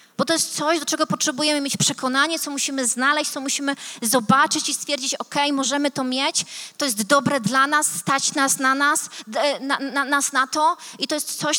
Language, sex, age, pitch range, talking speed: Polish, female, 30-49, 235-290 Hz, 200 wpm